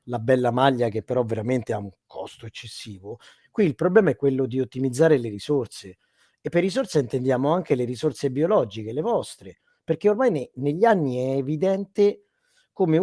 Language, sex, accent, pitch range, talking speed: Italian, male, native, 130-170 Hz, 165 wpm